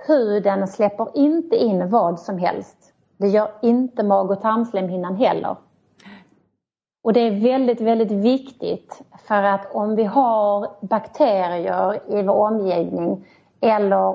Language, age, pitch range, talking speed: English, 30-49, 190-225 Hz, 130 wpm